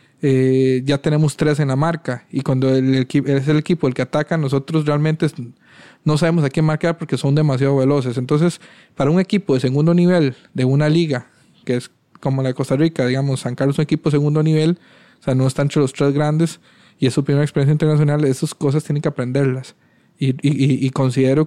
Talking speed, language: 220 wpm, Spanish